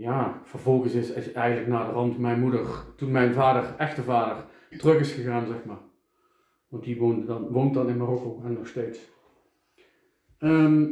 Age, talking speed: 40-59, 165 wpm